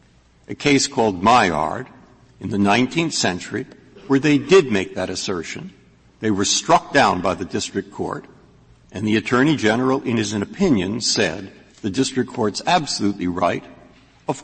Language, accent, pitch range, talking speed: English, American, 95-135 Hz, 150 wpm